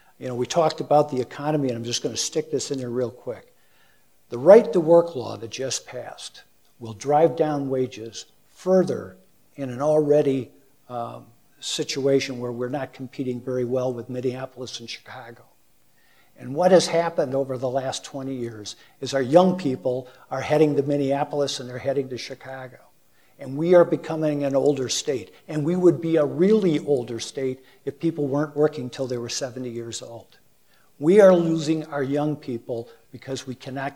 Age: 50-69